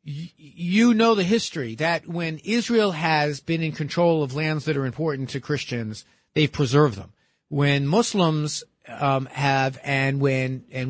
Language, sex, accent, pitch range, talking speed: English, male, American, 130-180 Hz, 155 wpm